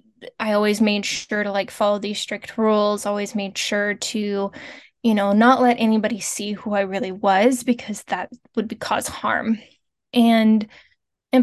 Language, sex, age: English, female, 10-29